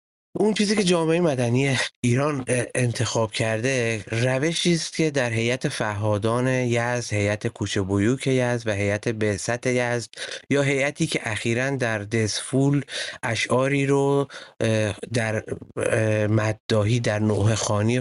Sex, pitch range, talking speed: male, 105-125 Hz, 125 wpm